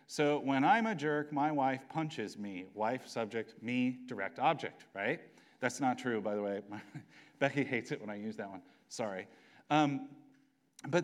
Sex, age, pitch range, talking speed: male, 40-59, 130-180 Hz, 175 wpm